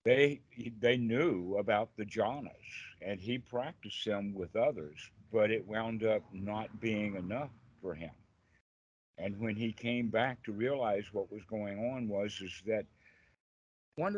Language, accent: English, American